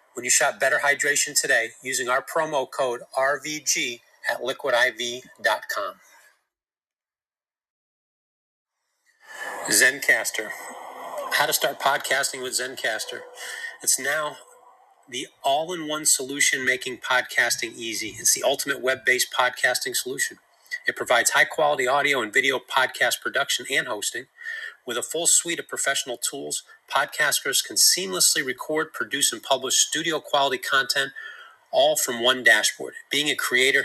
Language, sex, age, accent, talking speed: English, male, 40-59, American, 120 wpm